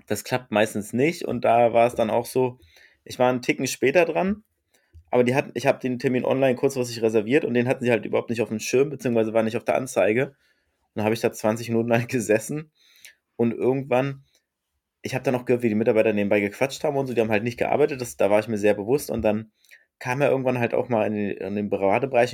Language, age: German, 20-39